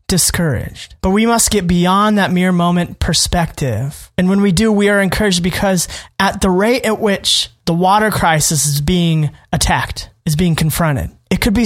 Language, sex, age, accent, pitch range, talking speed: English, male, 20-39, American, 160-200 Hz, 180 wpm